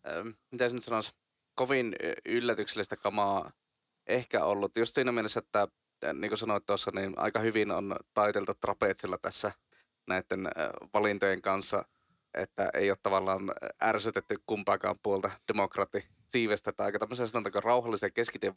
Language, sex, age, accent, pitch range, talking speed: Finnish, male, 30-49, native, 100-115 Hz, 130 wpm